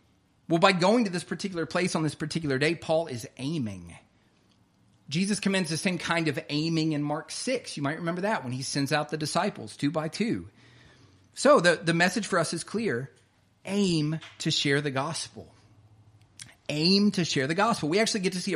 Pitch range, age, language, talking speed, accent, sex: 140-190 Hz, 40-59, English, 195 wpm, American, male